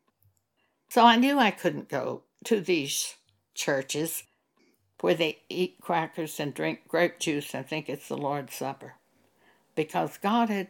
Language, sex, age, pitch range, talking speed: English, female, 60-79, 165-235 Hz, 145 wpm